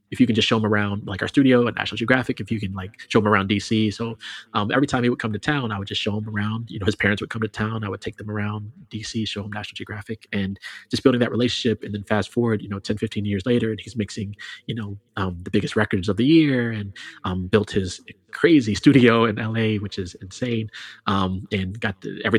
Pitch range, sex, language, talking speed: 95-110 Hz, male, English, 255 wpm